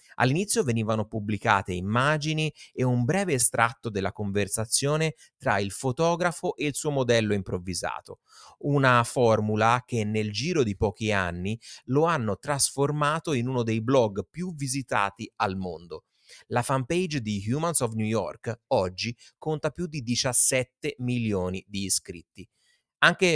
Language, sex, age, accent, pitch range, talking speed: Italian, male, 30-49, native, 100-135 Hz, 135 wpm